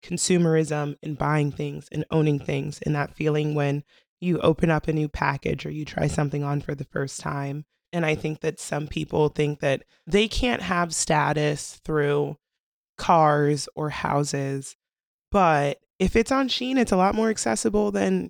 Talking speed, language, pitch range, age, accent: 175 wpm, English, 145-185 Hz, 20-39, American